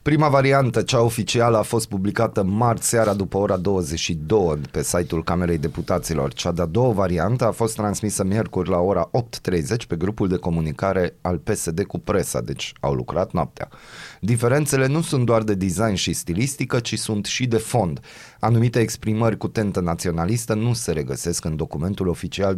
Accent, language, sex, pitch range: native, Romanian, male, 85-115 Hz